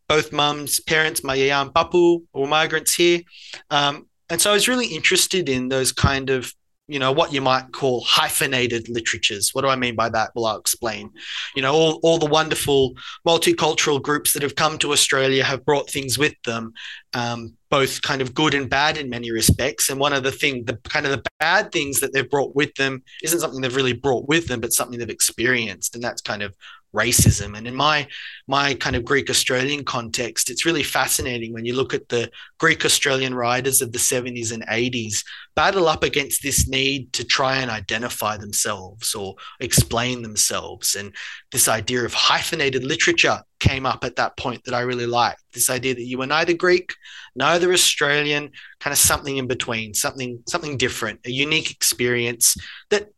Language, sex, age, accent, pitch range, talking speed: English, male, 30-49, Australian, 115-145 Hz, 190 wpm